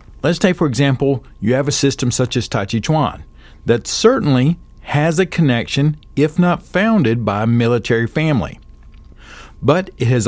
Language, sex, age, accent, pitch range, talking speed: English, male, 50-69, American, 115-150 Hz, 165 wpm